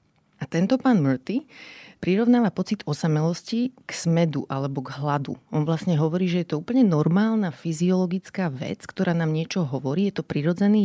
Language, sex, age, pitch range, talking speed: Slovak, female, 30-49, 150-185 Hz, 160 wpm